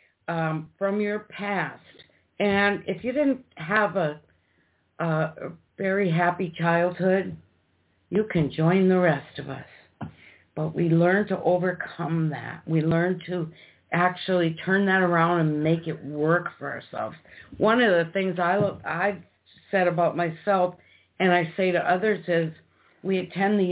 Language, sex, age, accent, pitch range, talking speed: English, female, 60-79, American, 160-190 Hz, 145 wpm